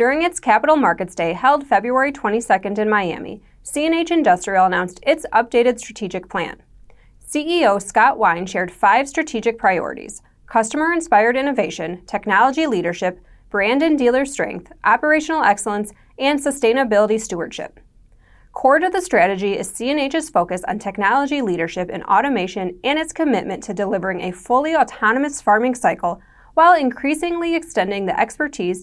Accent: American